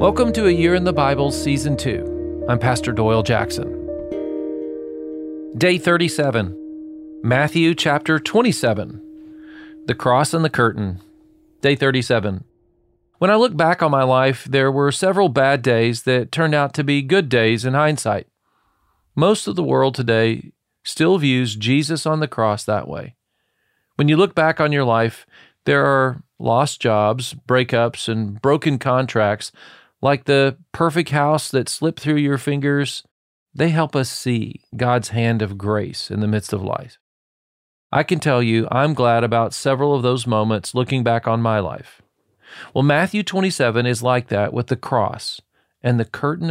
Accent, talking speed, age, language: American, 160 wpm, 40-59, English